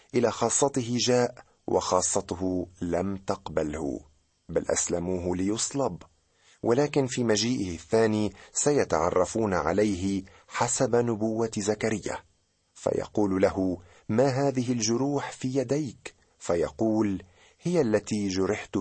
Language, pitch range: Arabic, 90-120 Hz